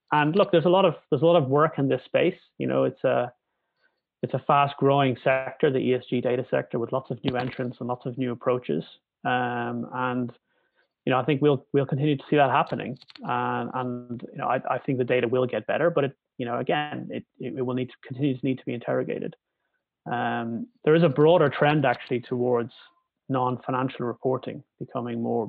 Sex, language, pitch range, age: male, English, 120-135 Hz, 30-49